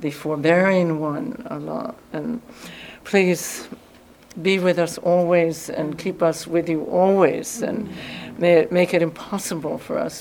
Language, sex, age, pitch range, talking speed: English, female, 60-79, 165-185 Hz, 140 wpm